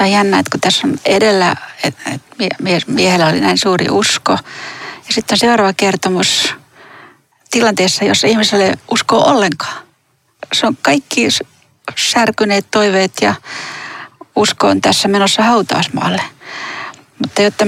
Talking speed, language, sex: 120 wpm, Finnish, female